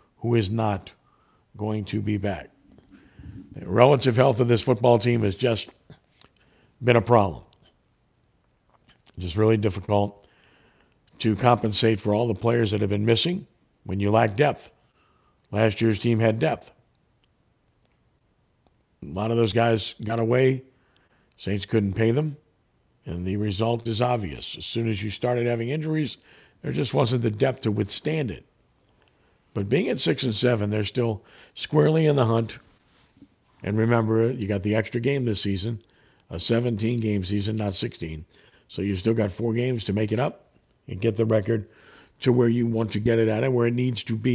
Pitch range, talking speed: 105-120 Hz, 170 wpm